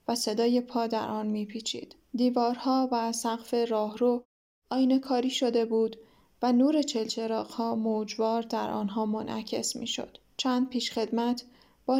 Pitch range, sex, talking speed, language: 225-255 Hz, female, 145 wpm, Persian